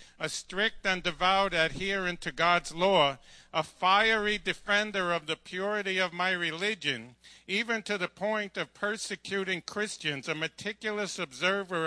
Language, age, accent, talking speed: English, 50-69, American, 135 wpm